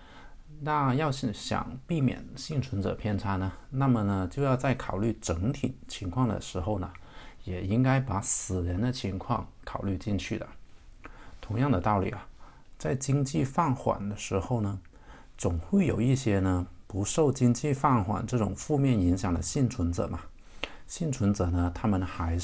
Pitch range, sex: 95-130 Hz, male